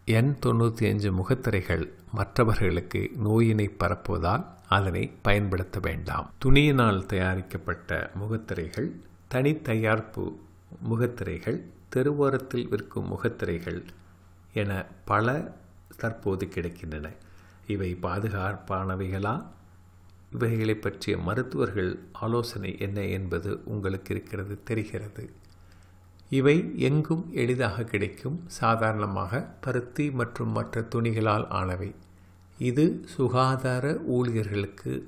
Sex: male